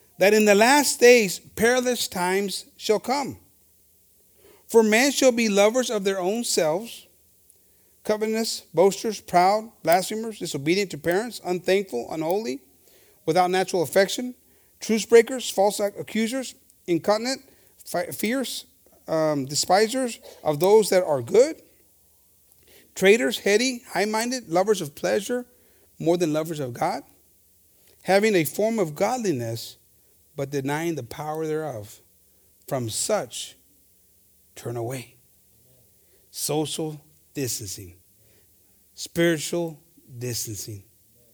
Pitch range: 135-215 Hz